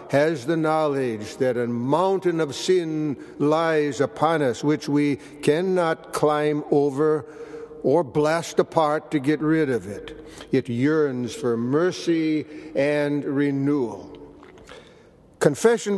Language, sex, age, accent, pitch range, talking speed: German, male, 60-79, American, 140-160 Hz, 115 wpm